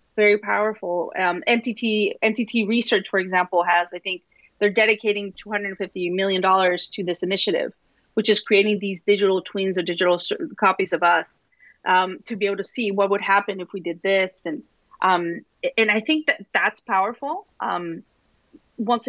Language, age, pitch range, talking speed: English, 30-49, 190-235 Hz, 165 wpm